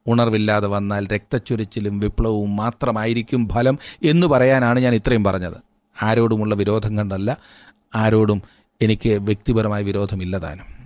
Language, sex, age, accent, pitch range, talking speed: Malayalam, male, 30-49, native, 105-125 Hz, 100 wpm